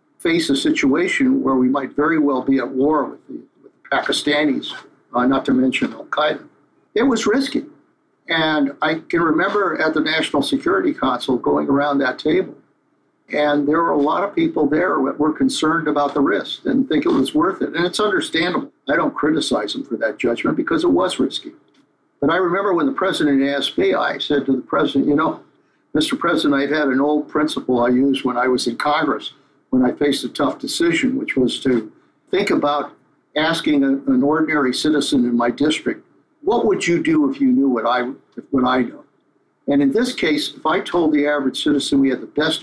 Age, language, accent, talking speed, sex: 50-69, English, American, 200 wpm, male